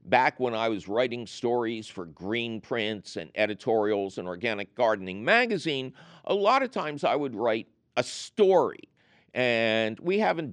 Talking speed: 155 wpm